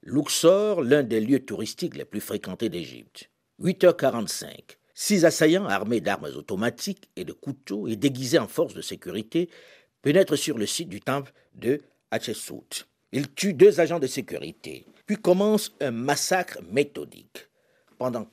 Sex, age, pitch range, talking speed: male, 60-79, 125-185 Hz, 145 wpm